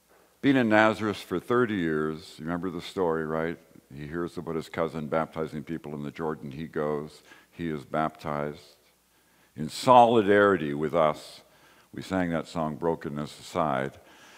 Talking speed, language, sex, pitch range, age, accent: 150 wpm, English, male, 80-115 Hz, 60-79, American